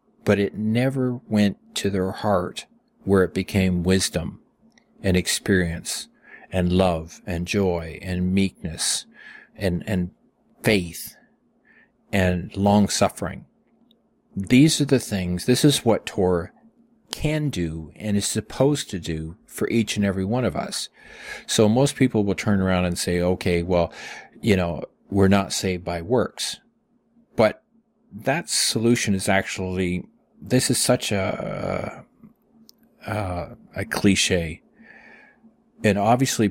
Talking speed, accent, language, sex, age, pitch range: 125 wpm, American, English, male, 40-59, 90-115 Hz